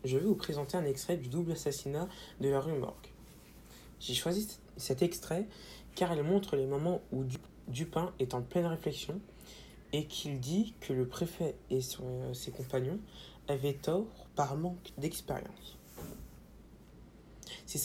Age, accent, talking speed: 20-39, French, 145 wpm